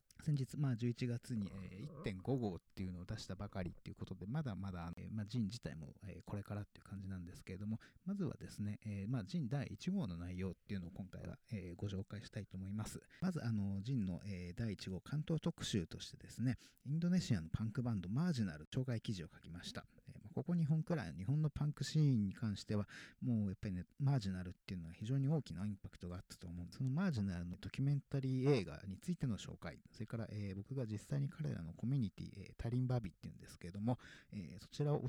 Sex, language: male, English